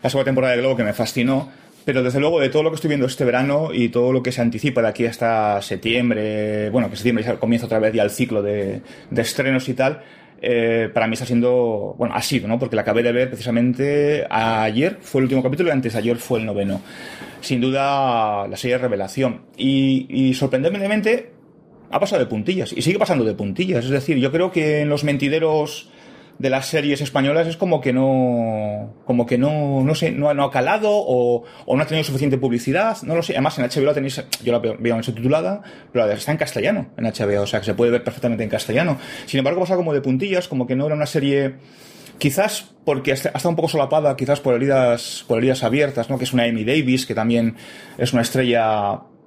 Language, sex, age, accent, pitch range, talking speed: Spanish, male, 30-49, Spanish, 120-145 Hz, 230 wpm